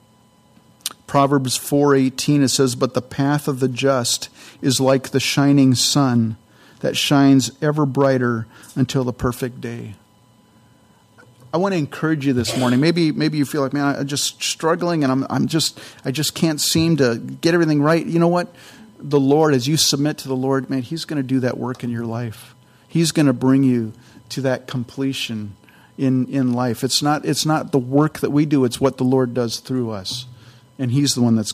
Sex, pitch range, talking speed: male, 125-145 Hz, 200 wpm